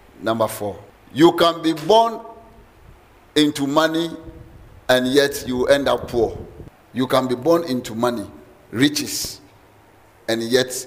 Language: English